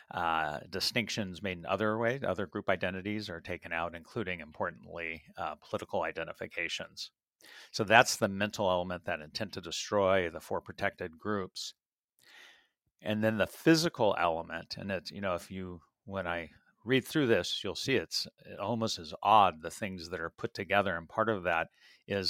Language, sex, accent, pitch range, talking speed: English, male, American, 90-110 Hz, 170 wpm